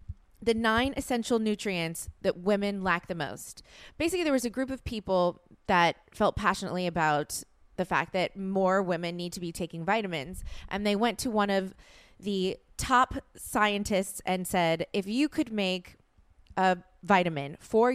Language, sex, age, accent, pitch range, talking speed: English, female, 20-39, American, 175-220 Hz, 160 wpm